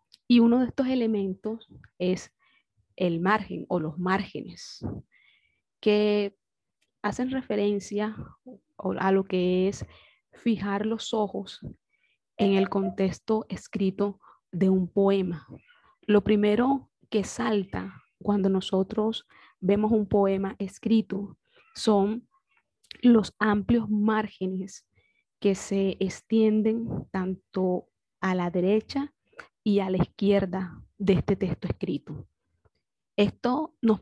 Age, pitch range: 30-49, 190-220 Hz